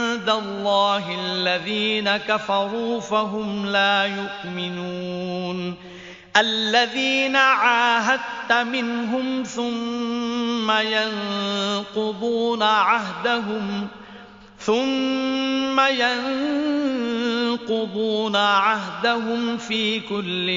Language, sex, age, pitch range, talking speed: Arabic, male, 40-59, 200-235 Hz, 50 wpm